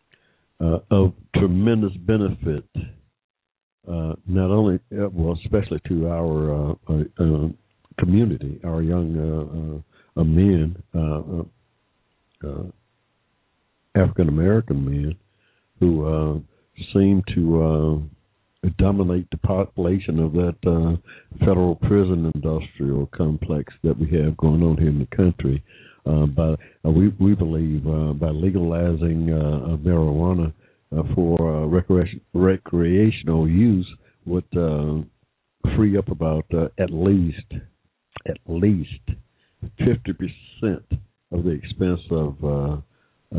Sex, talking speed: male, 115 wpm